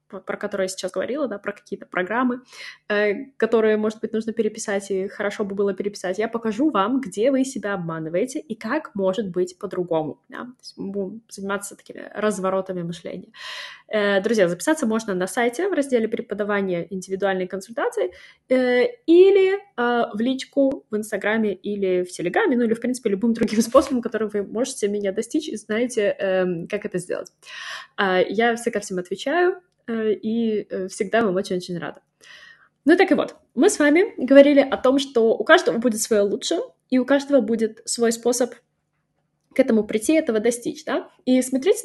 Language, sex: Russian, female